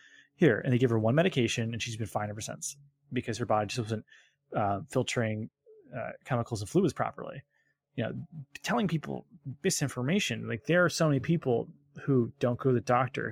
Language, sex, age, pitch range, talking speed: English, male, 20-39, 115-140 Hz, 190 wpm